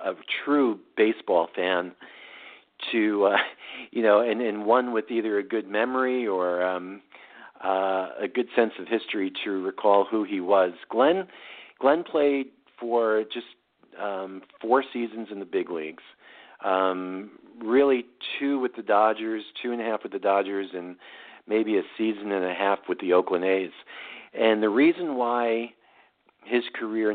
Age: 50-69